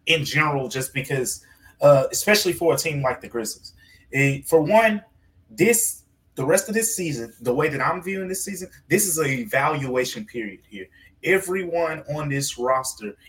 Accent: American